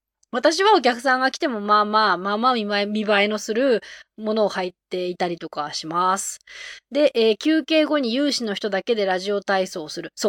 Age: 20-39